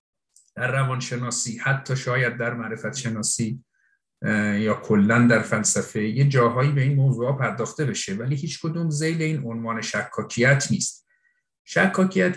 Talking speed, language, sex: 135 wpm, Persian, male